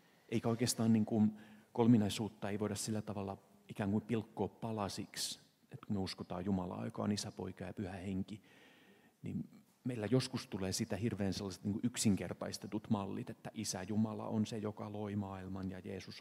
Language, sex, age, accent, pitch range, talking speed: Finnish, male, 40-59, native, 100-120 Hz, 145 wpm